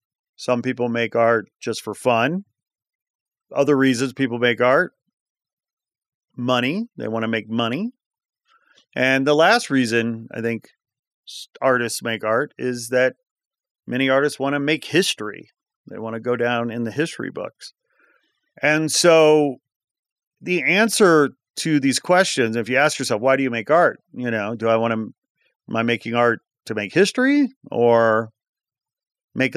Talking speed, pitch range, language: 150 wpm, 120-160 Hz, English